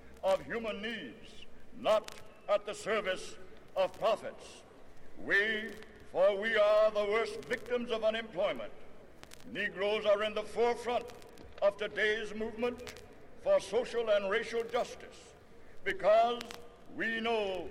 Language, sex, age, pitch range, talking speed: English, male, 60-79, 215-245 Hz, 115 wpm